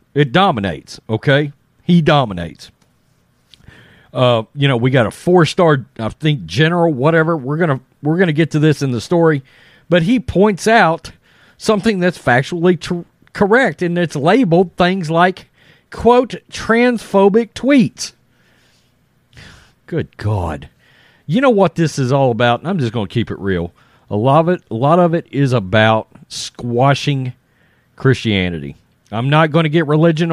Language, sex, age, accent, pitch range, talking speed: English, male, 40-59, American, 130-175 Hz, 155 wpm